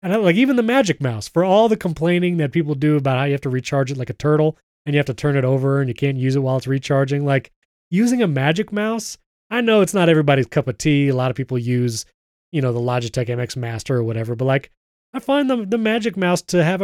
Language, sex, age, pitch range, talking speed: English, male, 30-49, 130-175 Hz, 265 wpm